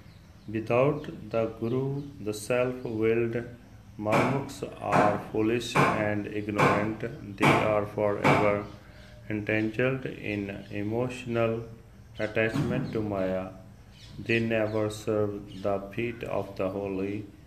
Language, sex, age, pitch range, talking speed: Punjabi, male, 40-59, 100-115 Hz, 95 wpm